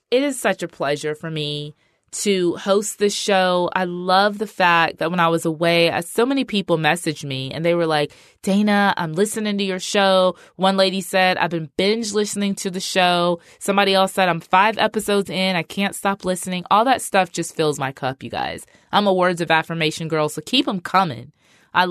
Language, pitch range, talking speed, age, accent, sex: English, 155-200 Hz, 210 wpm, 20-39, American, female